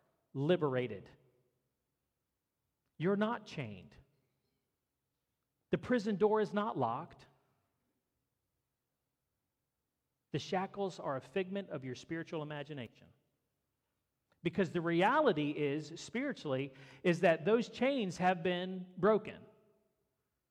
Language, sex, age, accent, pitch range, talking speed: English, male, 40-59, American, 130-180 Hz, 90 wpm